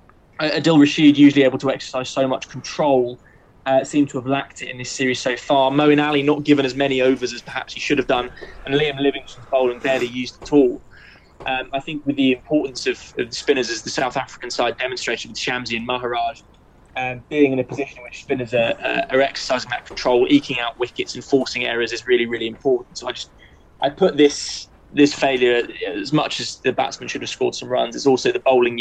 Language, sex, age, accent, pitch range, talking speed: English, male, 10-29, British, 125-140 Hz, 220 wpm